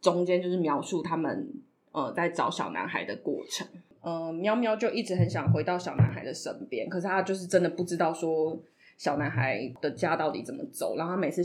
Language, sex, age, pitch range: Chinese, female, 20-39, 165-200 Hz